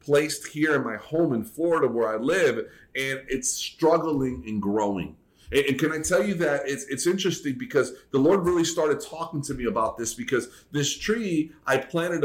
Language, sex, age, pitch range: English, male, 30-49, 125-155 Hz